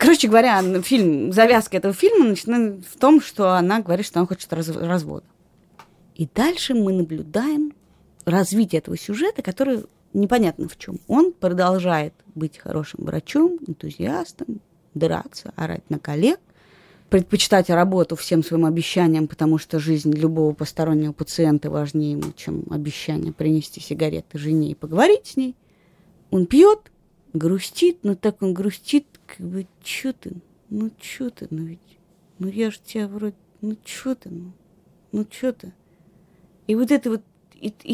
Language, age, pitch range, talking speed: Russian, 20-39, 175-225 Hz, 145 wpm